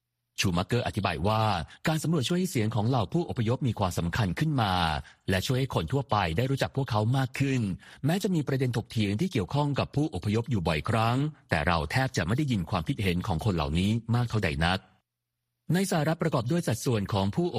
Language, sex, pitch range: Thai, male, 95-130 Hz